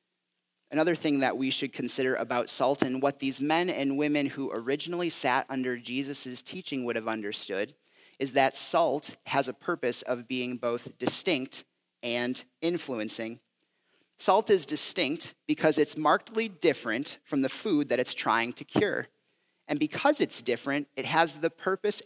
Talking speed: 160 wpm